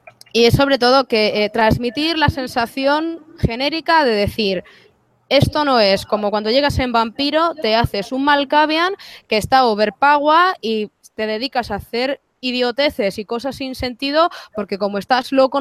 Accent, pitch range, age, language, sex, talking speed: Spanish, 195-255 Hz, 20-39, English, female, 160 wpm